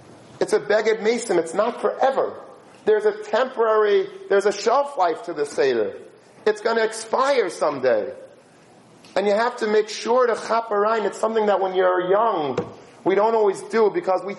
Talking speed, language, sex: 175 wpm, English, male